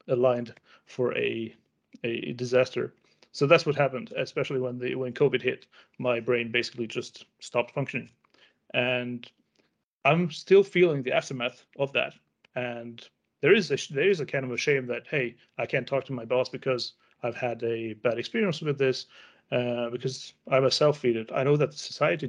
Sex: male